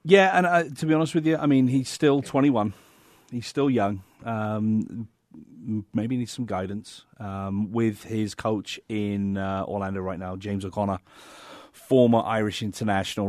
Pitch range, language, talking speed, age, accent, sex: 95-115 Hz, English, 160 wpm, 30-49, British, male